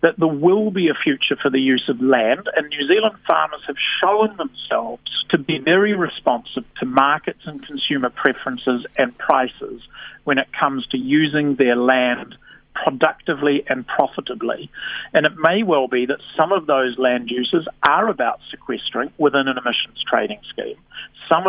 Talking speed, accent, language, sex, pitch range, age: 165 wpm, Australian, English, male, 135-165 Hz, 50-69